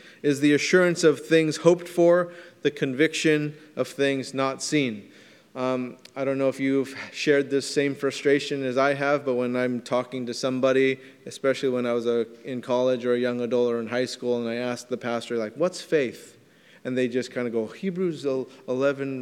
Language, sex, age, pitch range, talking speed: English, male, 30-49, 125-150 Hz, 195 wpm